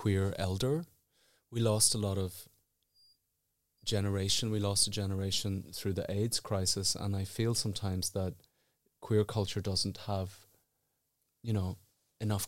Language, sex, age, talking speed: English, male, 30-49, 135 wpm